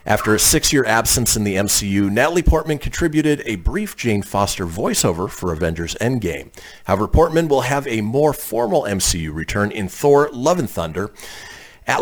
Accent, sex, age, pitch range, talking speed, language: American, male, 40-59, 90-145 Hz, 165 wpm, English